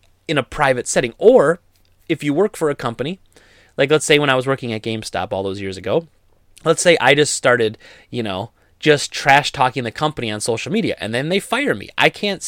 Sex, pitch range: male, 115-160 Hz